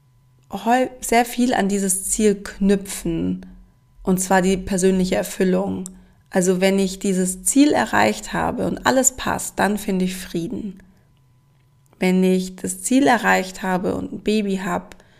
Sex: female